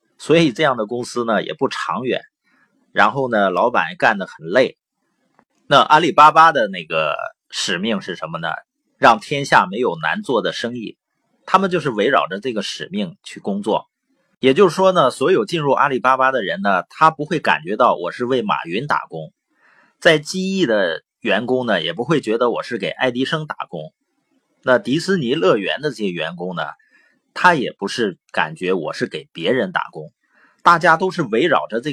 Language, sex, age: Chinese, male, 30-49